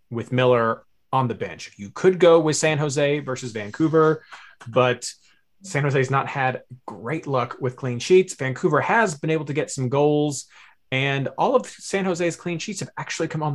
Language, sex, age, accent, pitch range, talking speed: English, male, 20-39, American, 115-145 Hz, 185 wpm